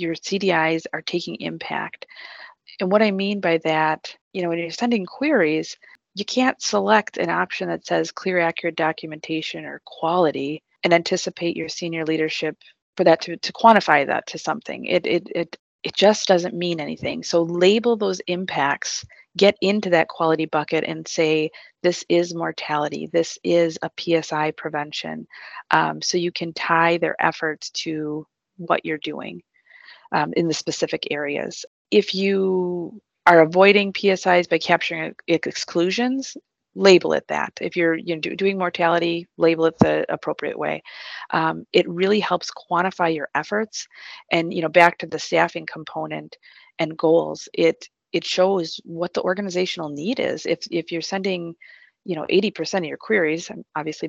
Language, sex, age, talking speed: English, female, 30-49, 160 wpm